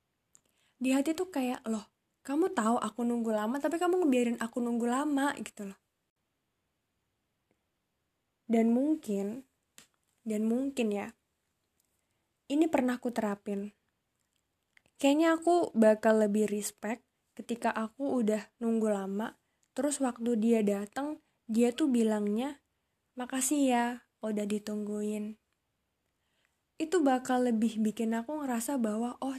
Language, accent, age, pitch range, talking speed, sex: Indonesian, native, 10-29, 215-255 Hz, 115 wpm, female